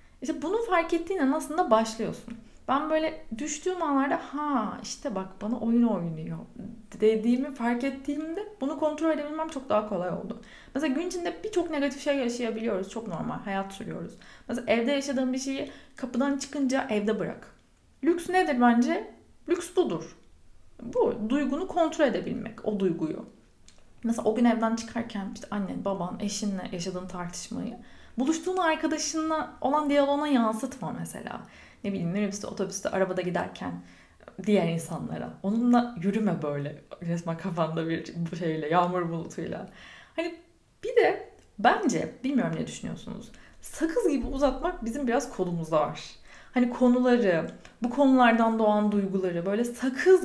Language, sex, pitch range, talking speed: Turkish, female, 200-300 Hz, 135 wpm